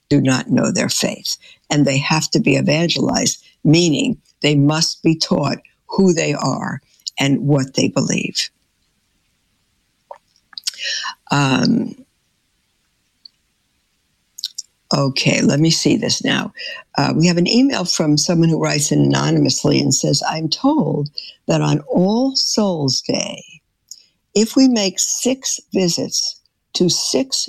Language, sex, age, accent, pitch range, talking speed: English, female, 60-79, American, 150-195 Hz, 120 wpm